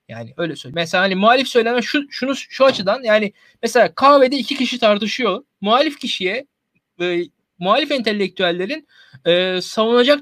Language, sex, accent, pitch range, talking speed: Turkish, male, native, 175-235 Hz, 140 wpm